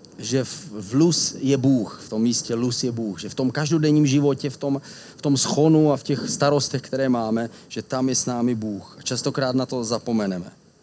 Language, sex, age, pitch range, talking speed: Czech, male, 40-59, 115-140 Hz, 200 wpm